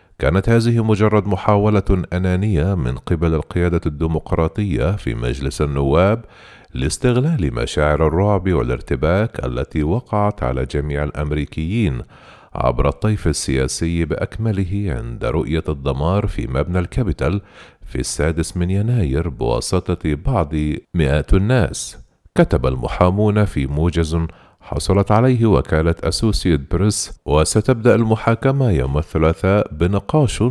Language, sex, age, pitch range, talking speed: Arabic, male, 40-59, 75-105 Hz, 105 wpm